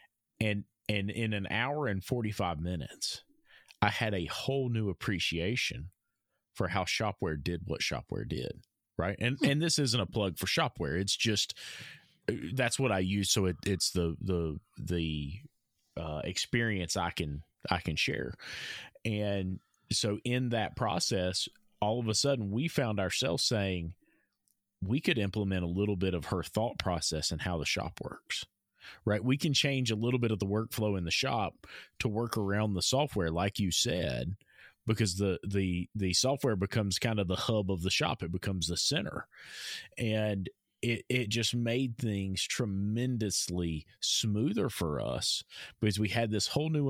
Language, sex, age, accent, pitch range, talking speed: English, male, 30-49, American, 90-115 Hz, 170 wpm